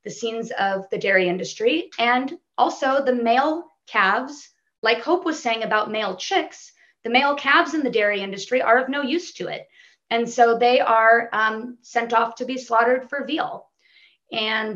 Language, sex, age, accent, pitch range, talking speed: English, female, 30-49, American, 220-270 Hz, 180 wpm